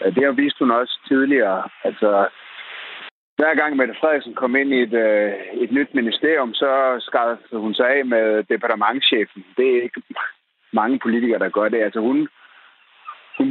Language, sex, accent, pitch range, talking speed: Danish, male, native, 110-150 Hz, 160 wpm